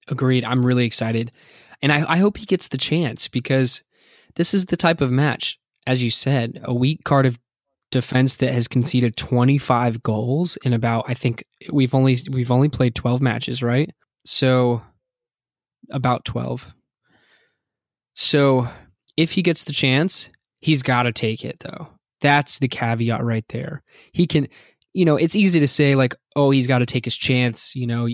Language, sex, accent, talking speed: English, male, American, 175 wpm